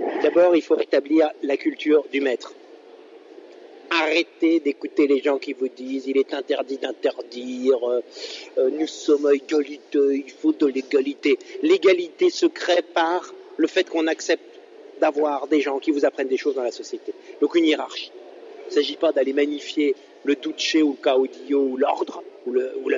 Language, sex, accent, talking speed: French, male, French, 170 wpm